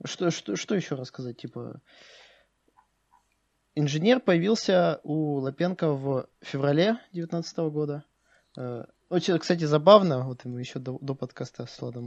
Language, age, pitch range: Russian, 20-39, 135-170 Hz